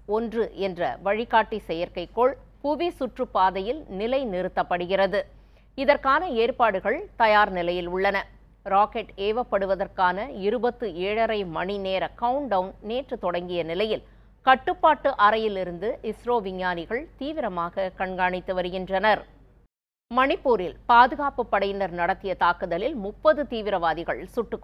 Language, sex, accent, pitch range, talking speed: Tamil, female, native, 185-235 Hz, 95 wpm